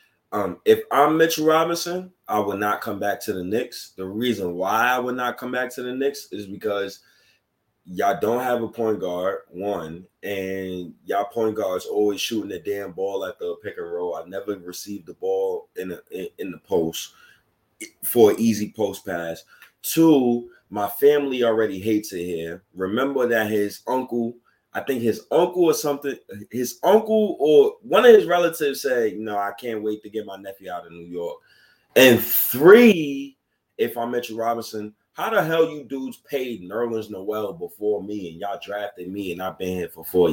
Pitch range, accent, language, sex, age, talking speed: 100-155 Hz, American, English, male, 20-39, 185 wpm